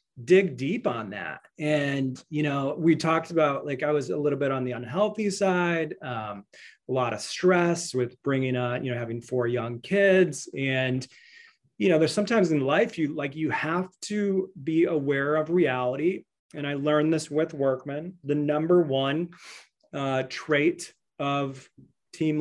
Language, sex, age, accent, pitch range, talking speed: English, male, 30-49, American, 130-170 Hz, 170 wpm